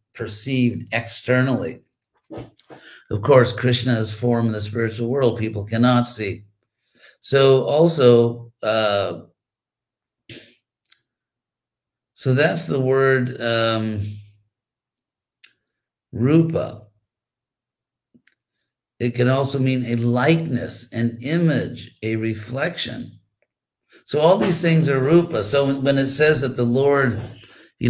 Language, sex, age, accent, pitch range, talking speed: English, male, 50-69, American, 110-130 Hz, 100 wpm